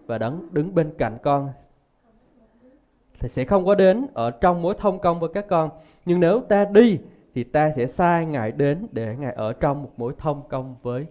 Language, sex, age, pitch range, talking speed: Vietnamese, male, 20-39, 125-160 Hz, 200 wpm